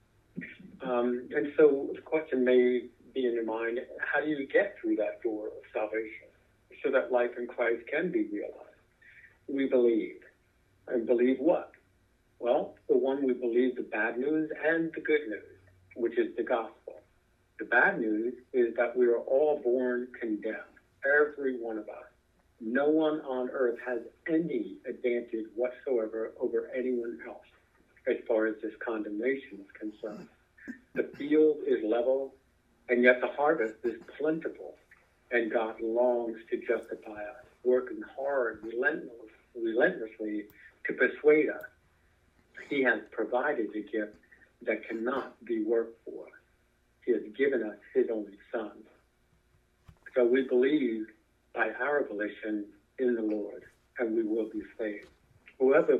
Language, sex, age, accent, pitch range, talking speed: English, male, 60-79, American, 115-160 Hz, 145 wpm